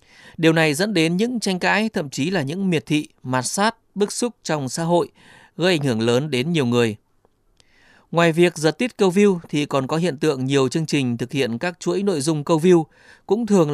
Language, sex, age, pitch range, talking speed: Vietnamese, male, 20-39, 125-170 Hz, 225 wpm